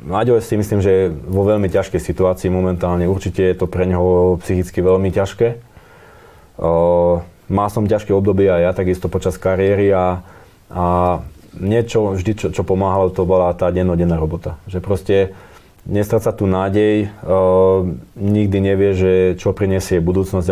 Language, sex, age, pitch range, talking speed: Slovak, male, 20-39, 90-100 Hz, 150 wpm